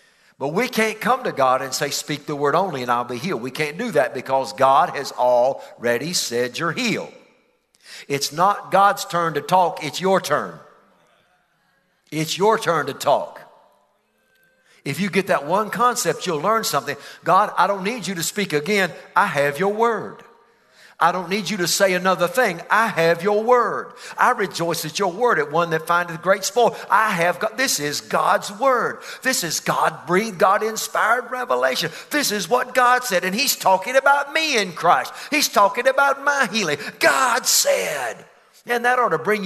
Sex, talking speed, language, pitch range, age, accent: male, 185 wpm, English, 170-245 Hz, 50-69, American